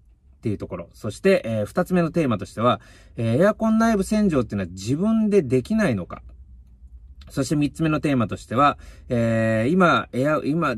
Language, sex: Japanese, male